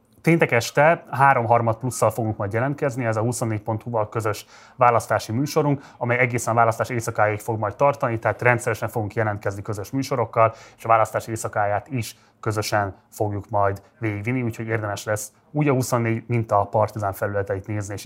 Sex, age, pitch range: male, 30-49, 105-125 Hz